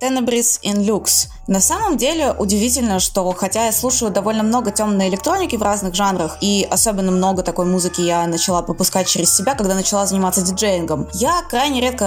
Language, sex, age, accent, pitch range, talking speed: Russian, female, 20-39, native, 190-255 Hz, 175 wpm